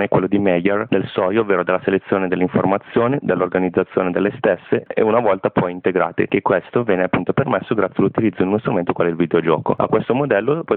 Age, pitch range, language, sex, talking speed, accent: 30-49, 95-110 Hz, Italian, male, 195 wpm, native